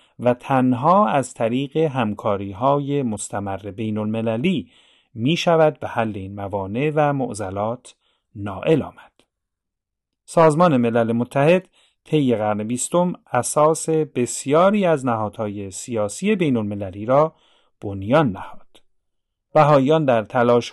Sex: male